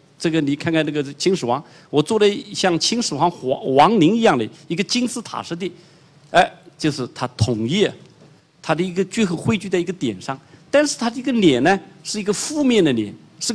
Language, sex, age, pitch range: Chinese, male, 50-69, 135-190 Hz